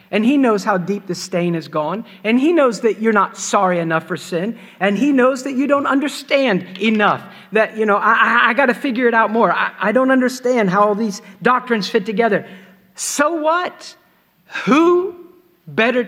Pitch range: 165-220 Hz